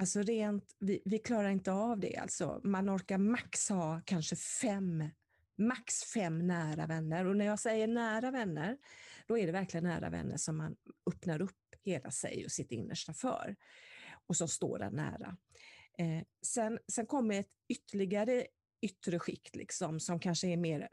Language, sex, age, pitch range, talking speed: Swedish, female, 30-49, 160-210 Hz, 170 wpm